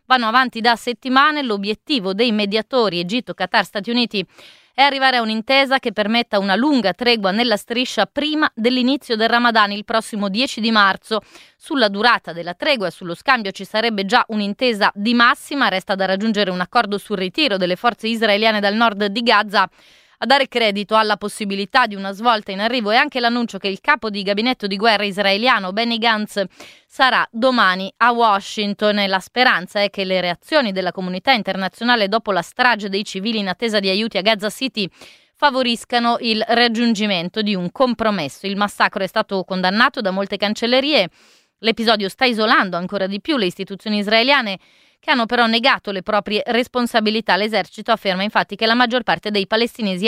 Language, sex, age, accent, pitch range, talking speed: Italian, female, 30-49, native, 200-240 Hz, 175 wpm